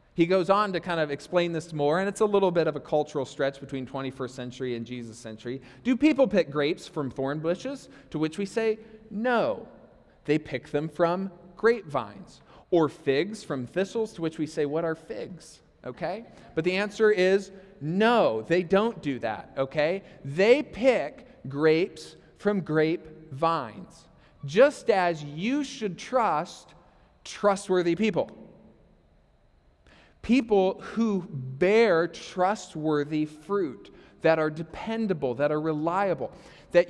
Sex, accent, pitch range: male, American, 155-210 Hz